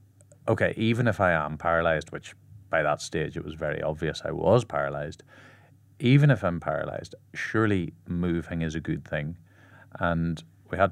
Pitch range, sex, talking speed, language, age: 80-100 Hz, male, 165 wpm, English, 30-49